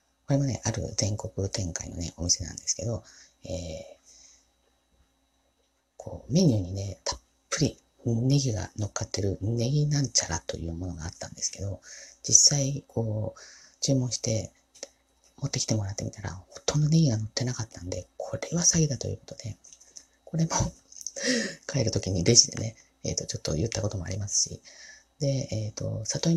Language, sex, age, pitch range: Japanese, female, 30-49, 95-130 Hz